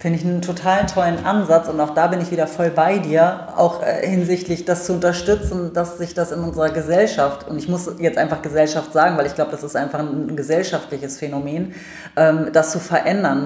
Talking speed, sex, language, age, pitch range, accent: 210 wpm, female, German, 30-49, 155-180 Hz, German